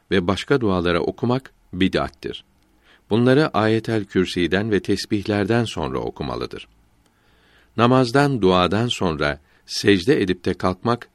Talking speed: 95 wpm